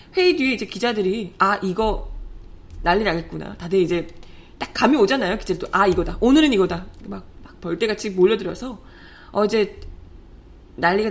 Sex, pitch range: female, 180-305 Hz